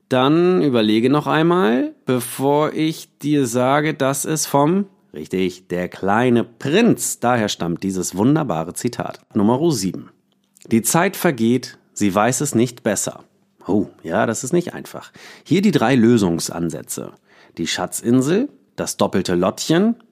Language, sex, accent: German, male, German